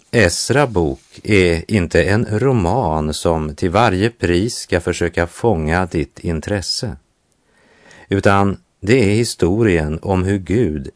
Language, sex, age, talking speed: Italian, male, 50-69, 115 wpm